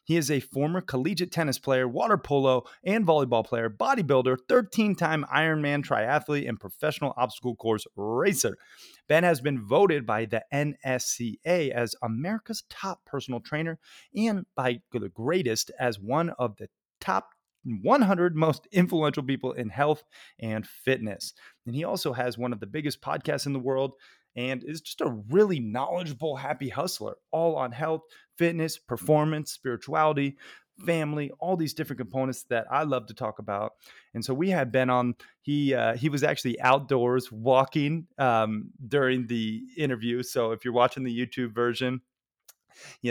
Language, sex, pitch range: English, male, 110-150 Hz